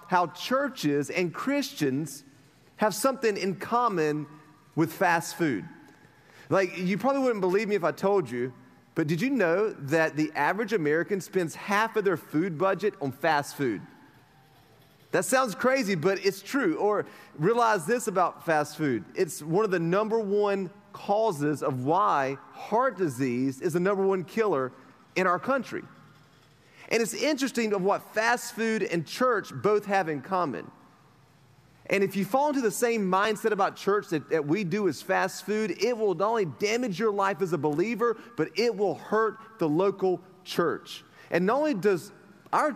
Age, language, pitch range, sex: 30-49, English, 160-220 Hz, male